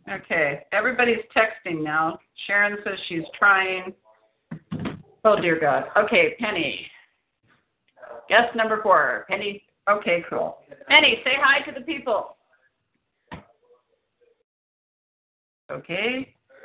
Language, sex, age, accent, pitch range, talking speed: English, female, 40-59, American, 205-330 Hz, 95 wpm